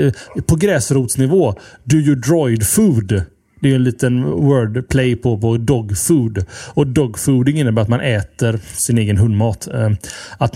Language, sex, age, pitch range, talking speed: Swedish, male, 30-49, 115-155 Hz, 135 wpm